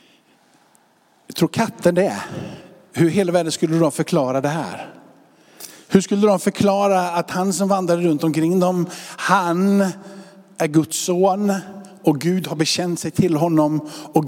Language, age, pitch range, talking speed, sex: Swedish, 50-69, 155-205 Hz, 150 wpm, male